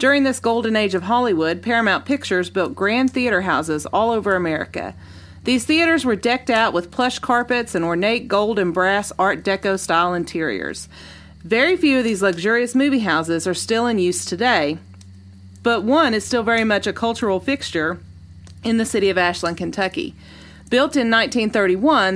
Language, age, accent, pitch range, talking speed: English, 40-59, American, 175-255 Hz, 170 wpm